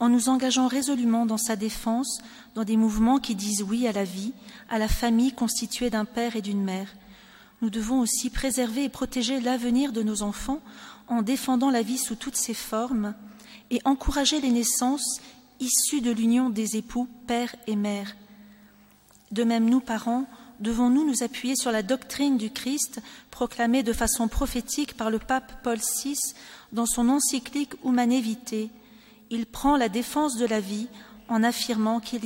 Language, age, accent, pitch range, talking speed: French, 40-59, French, 220-255 Hz, 170 wpm